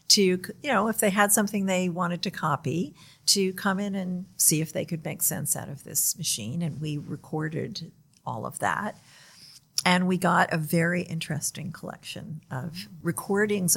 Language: English